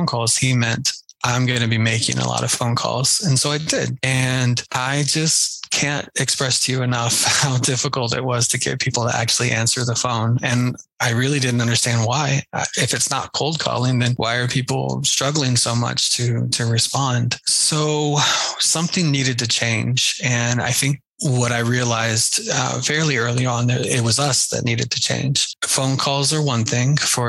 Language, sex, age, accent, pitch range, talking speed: English, male, 20-39, American, 120-145 Hz, 190 wpm